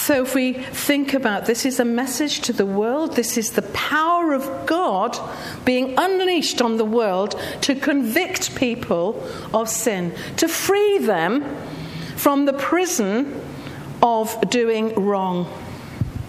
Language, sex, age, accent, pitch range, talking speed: English, female, 50-69, British, 205-285 Hz, 135 wpm